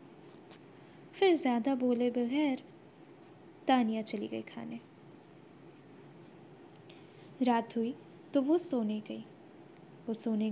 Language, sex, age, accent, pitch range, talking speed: Hindi, female, 20-39, native, 230-295 Hz, 85 wpm